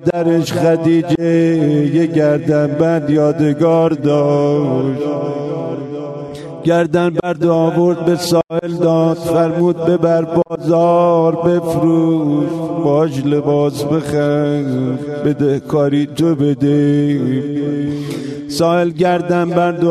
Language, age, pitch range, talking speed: Persian, 50-69, 150-170 Hz, 80 wpm